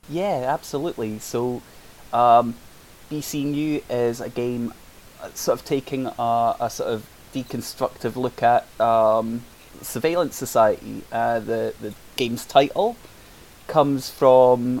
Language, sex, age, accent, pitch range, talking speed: English, male, 20-39, British, 115-130 Hz, 120 wpm